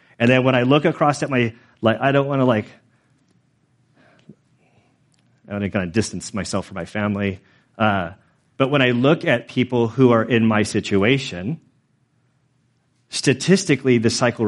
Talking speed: 160 wpm